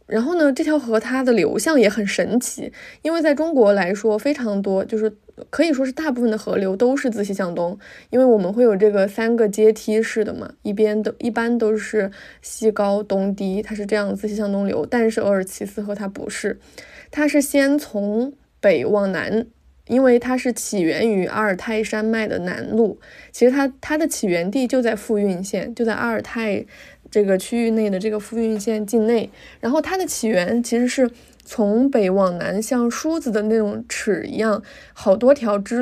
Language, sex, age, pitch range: Chinese, female, 20-39, 205-255 Hz